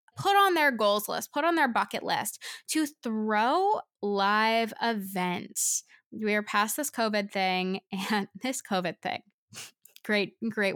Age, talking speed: 10-29, 145 wpm